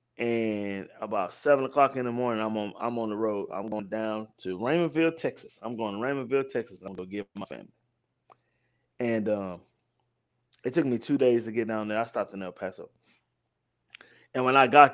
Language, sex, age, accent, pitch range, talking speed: English, male, 20-39, American, 115-135 Hz, 195 wpm